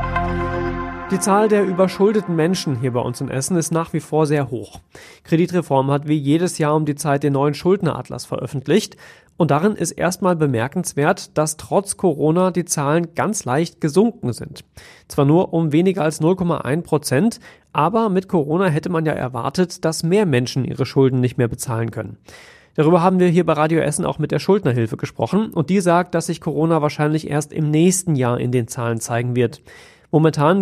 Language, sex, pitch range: German, male, 140-175 Hz